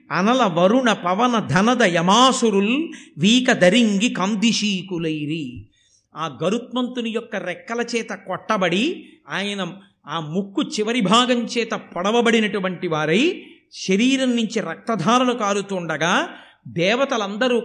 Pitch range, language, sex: 190-250 Hz, Telugu, male